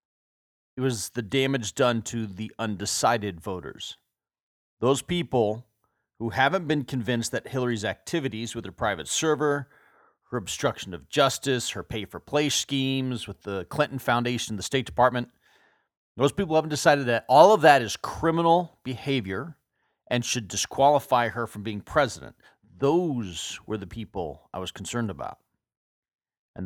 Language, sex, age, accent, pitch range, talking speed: English, male, 40-59, American, 110-135 Hz, 140 wpm